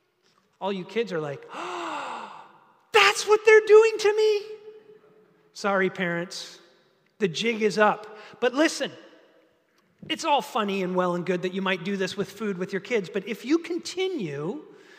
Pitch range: 235-340 Hz